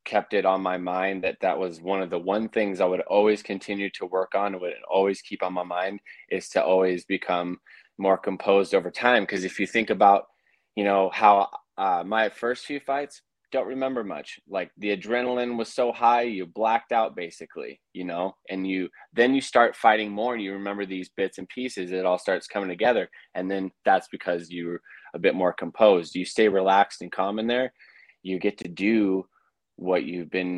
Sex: male